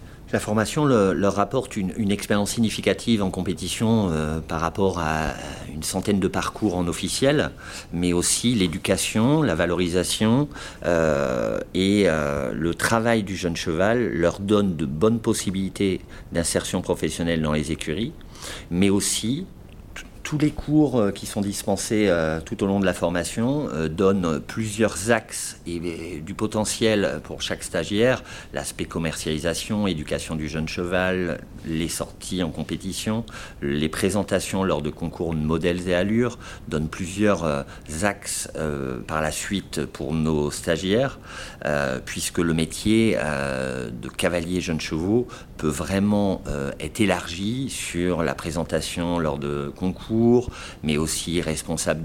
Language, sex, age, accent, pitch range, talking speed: French, male, 50-69, French, 80-100 Hz, 135 wpm